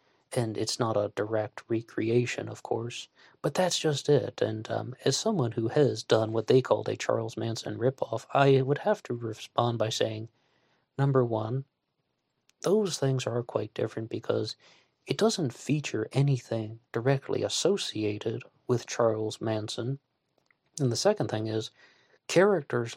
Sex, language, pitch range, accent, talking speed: male, English, 110-135 Hz, American, 145 wpm